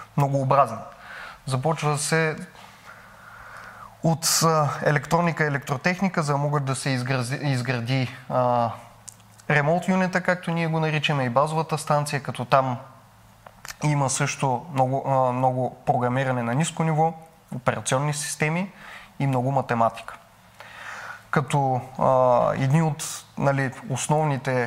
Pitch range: 125-150 Hz